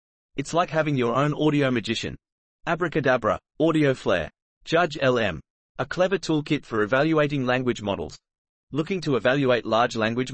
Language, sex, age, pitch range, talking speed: English, male, 30-49, 120-150 Hz, 140 wpm